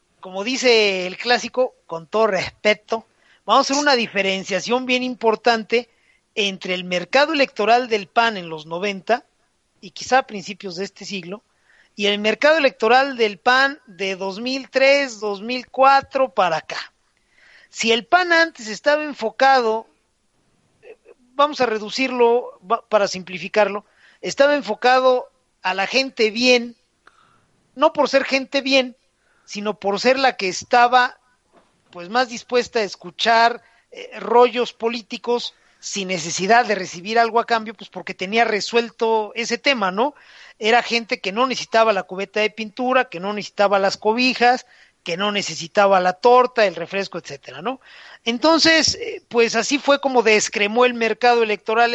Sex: male